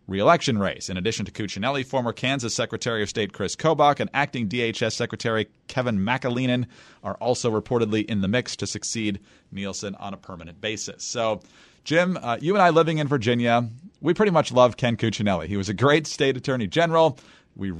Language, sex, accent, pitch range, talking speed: English, male, American, 110-140 Hz, 185 wpm